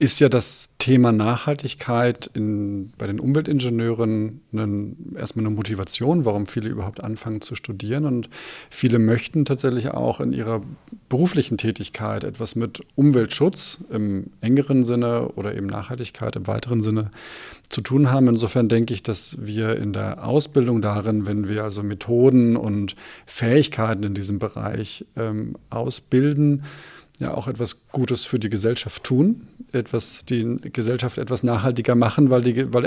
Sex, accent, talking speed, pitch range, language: male, German, 140 wpm, 110-130 Hz, German